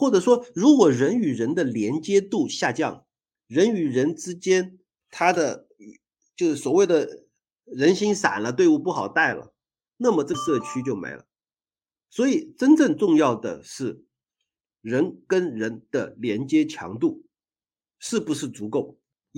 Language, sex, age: Chinese, male, 50-69